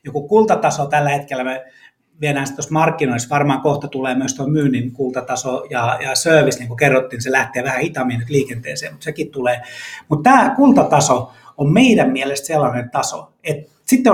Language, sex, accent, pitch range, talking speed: Finnish, male, native, 130-160 Hz, 160 wpm